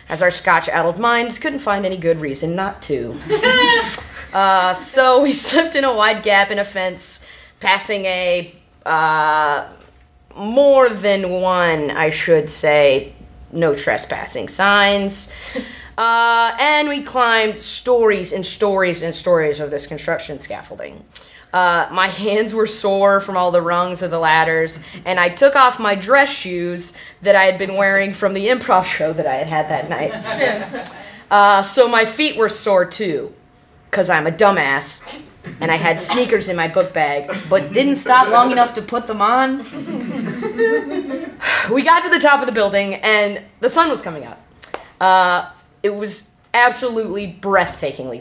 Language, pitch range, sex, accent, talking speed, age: English, 175-240 Hz, female, American, 160 wpm, 20-39